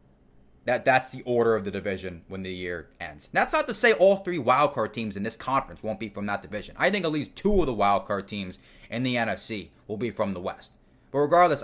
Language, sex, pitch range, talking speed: English, male, 105-140 Hz, 235 wpm